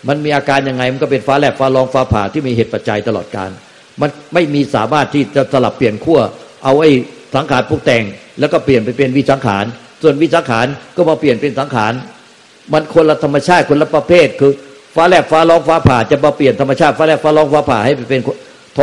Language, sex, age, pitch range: Thai, male, 60-79, 130-155 Hz